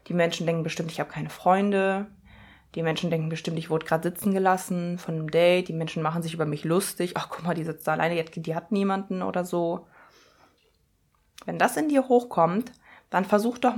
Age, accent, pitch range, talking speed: 20-39, German, 160-200 Hz, 205 wpm